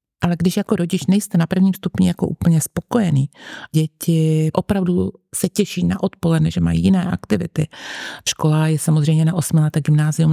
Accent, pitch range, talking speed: native, 160-185 Hz, 155 wpm